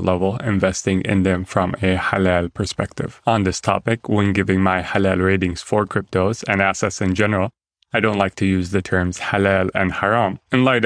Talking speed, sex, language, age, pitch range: 190 wpm, male, English, 20-39, 95-110 Hz